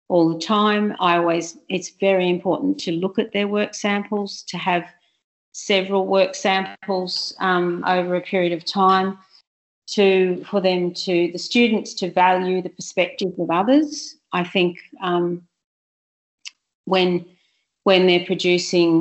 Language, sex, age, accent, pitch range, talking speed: English, female, 40-59, Australian, 165-190 Hz, 140 wpm